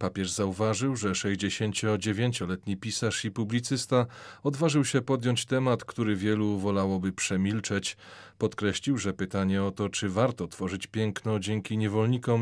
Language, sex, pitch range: Polish, male, 100-120 Hz